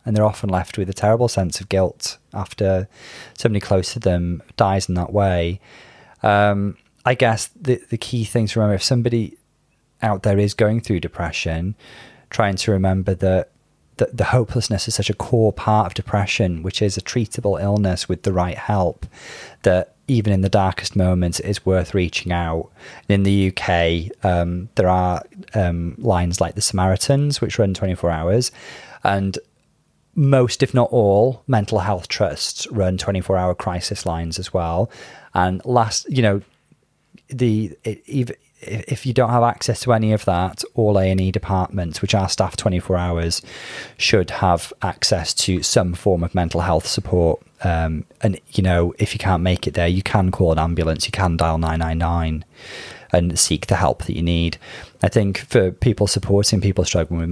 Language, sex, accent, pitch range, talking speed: English, male, British, 90-110 Hz, 175 wpm